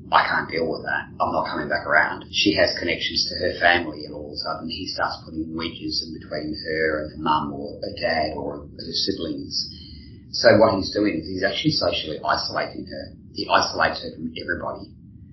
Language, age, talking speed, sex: English, 30-49, 205 wpm, male